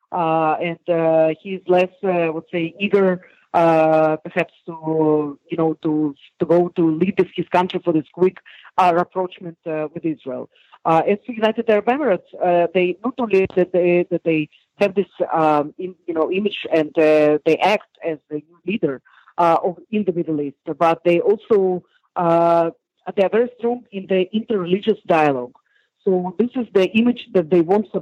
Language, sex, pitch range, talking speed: English, female, 165-205 Hz, 185 wpm